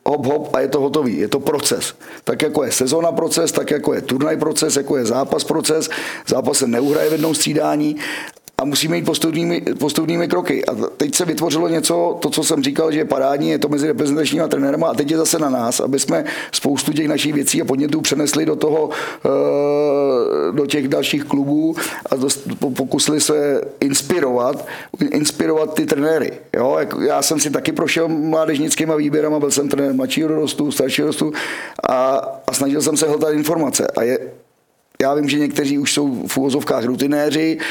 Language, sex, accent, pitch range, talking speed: Czech, male, native, 135-155 Hz, 180 wpm